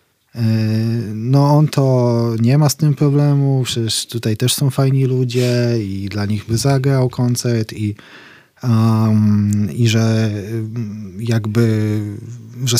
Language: Polish